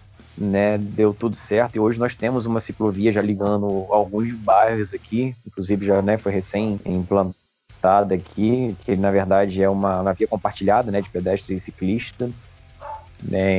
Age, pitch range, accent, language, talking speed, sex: 20-39, 100-135 Hz, Brazilian, Portuguese, 160 wpm, male